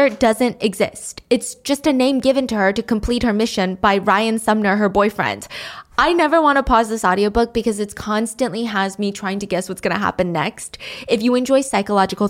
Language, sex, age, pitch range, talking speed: English, female, 10-29, 190-225 Hz, 205 wpm